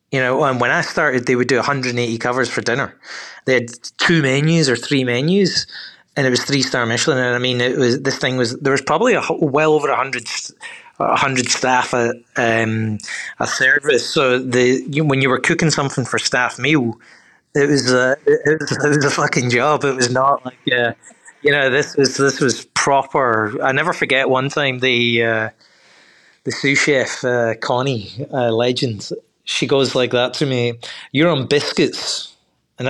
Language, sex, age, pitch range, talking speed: English, male, 30-49, 125-150 Hz, 190 wpm